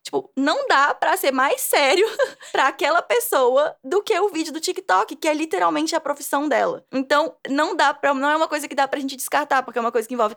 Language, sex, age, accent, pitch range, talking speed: English, female, 10-29, Brazilian, 220-300 Hz, 230 wpm